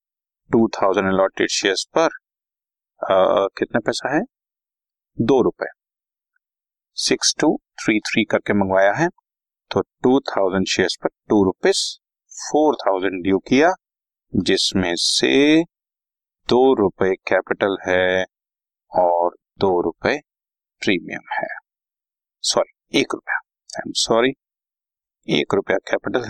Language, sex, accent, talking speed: Hindi, male, native, 100 wpm